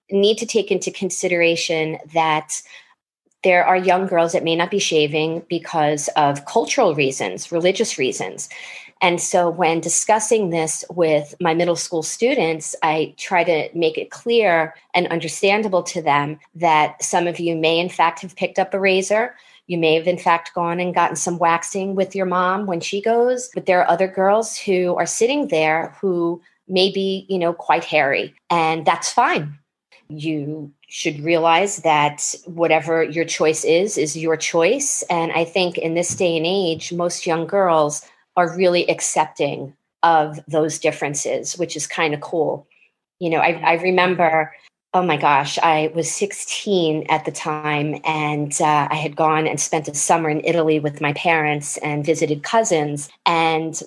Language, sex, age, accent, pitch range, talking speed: English, female, 40-59, American, 155-185 Hz, 170 wpm